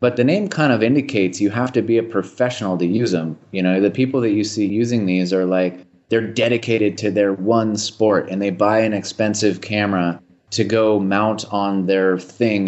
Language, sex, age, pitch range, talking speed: English, male, 30-49, 95-120 Hz, 210 wpm